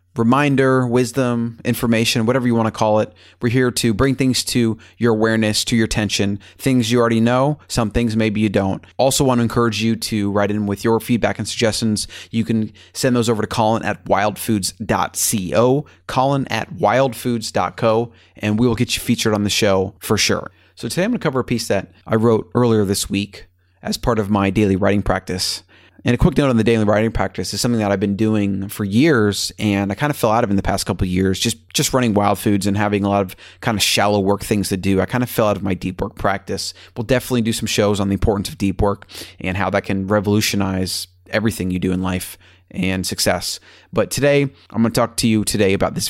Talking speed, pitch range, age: 230 wpm, 95-120 Hz, 30-49